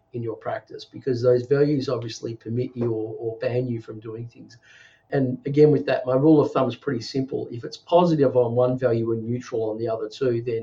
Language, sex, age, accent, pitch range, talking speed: English, male, 40-59, Australian, 115-140 Hz, 225 wpm